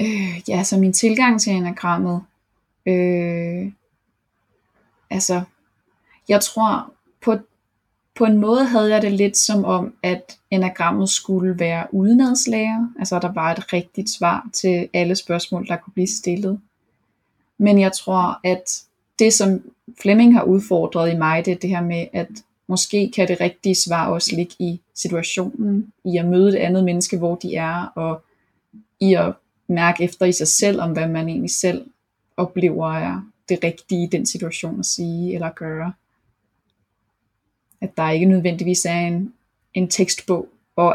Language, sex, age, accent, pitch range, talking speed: Danish, female, 20-39, native, 175-205 Hz, 160 wpm